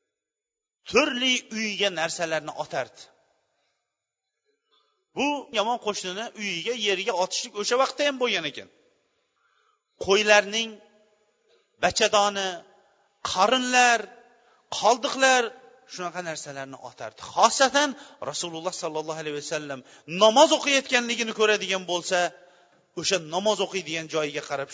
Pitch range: 175-250 Hz